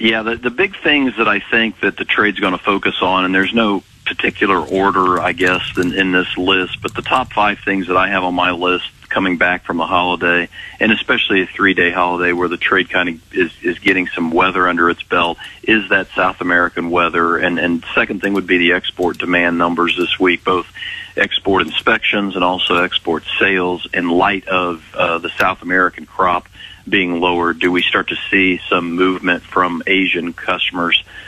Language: English